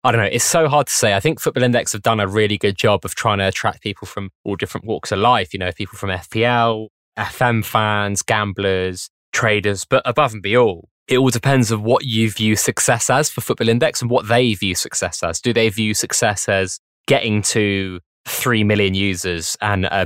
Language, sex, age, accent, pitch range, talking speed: English, male, 20-39, British, 105-125 Hz, 215 wpm